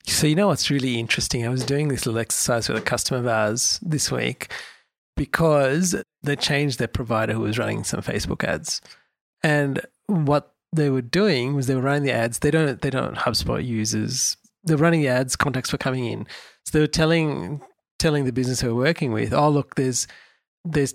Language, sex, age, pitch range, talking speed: English, male, 40-59, 130-155 Hz, 200 wpm